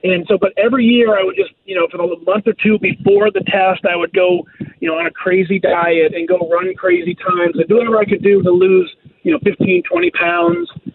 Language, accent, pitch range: English, American, 160-195 Hz